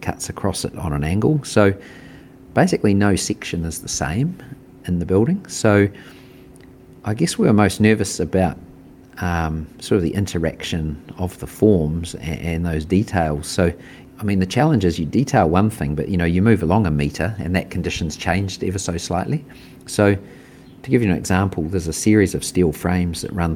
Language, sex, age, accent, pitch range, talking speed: English, male, 40-59, Australian, 80-105 Hz, 190 wpm